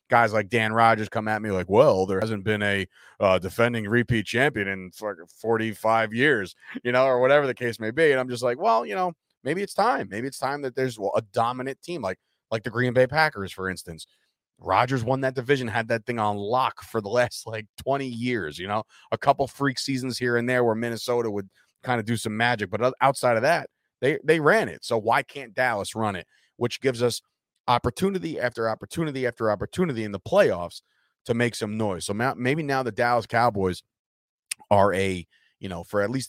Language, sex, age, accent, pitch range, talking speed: English, male, 30-49, American, 100-125 Hz, 215 wpm